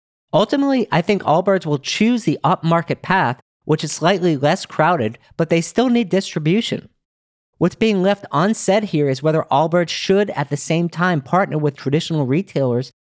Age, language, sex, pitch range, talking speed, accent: 40-59, English, male, 140-200 Hz, 165 wpm, American